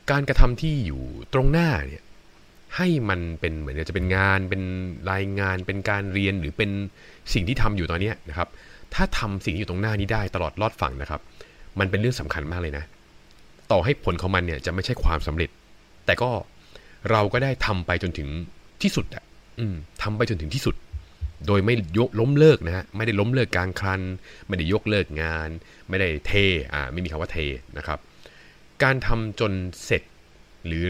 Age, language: 20-39, Thai